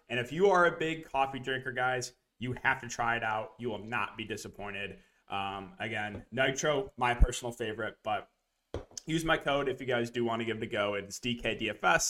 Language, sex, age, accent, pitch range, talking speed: English, male, 20-39, American, 125-165 Hz, 210 wpm